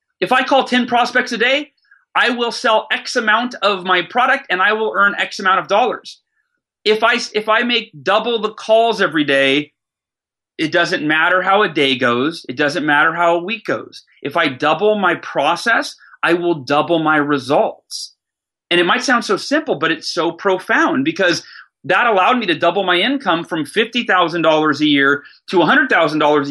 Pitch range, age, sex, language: 165-230 Hz, 30-49, male, English